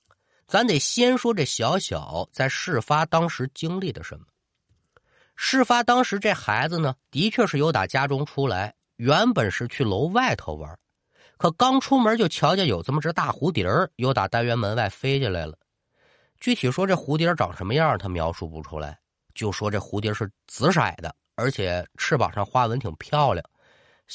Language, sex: Chinese, male